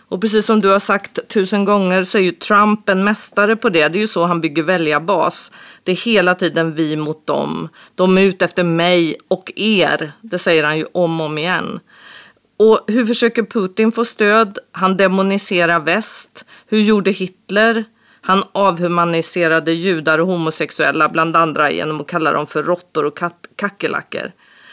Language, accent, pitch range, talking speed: Swedish, native, 170-220 Hz, 175 wpm